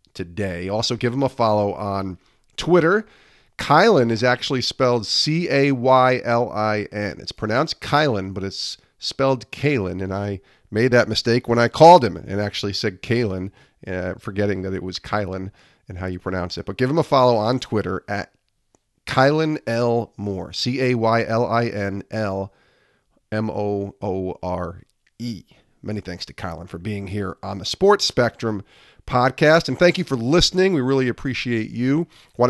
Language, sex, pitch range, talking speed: English, male, 100-135 Hz, 145 wpm